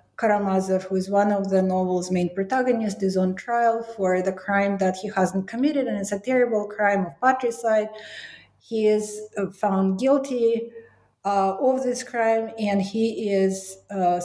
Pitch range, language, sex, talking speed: 185-230 Hz, English, female, 160 wpm